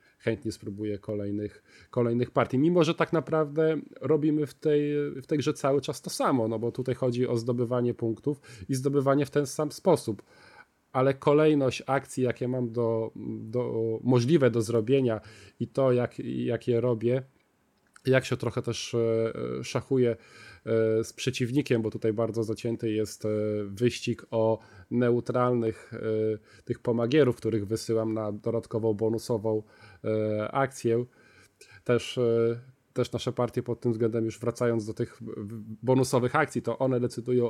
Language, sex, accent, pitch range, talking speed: Polish, male, native, 110-130 Hz, 140 wpm